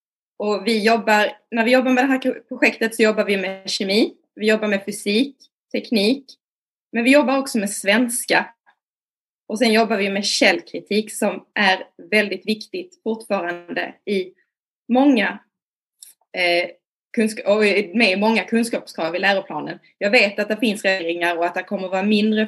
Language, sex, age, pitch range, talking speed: Swedish, female, 20-39, 195-245 Hz, 160 wpm